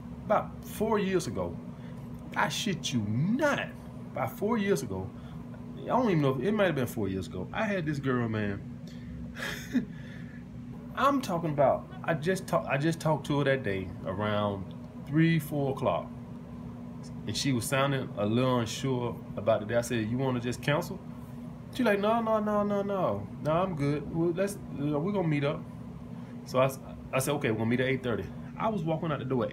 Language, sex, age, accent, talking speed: English, male, 20-39, American, 195 wpm